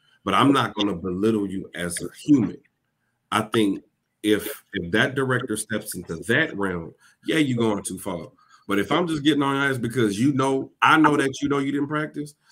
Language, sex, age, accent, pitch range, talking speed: English, male, 40-59, American, 95-120 Hz, 210 wpm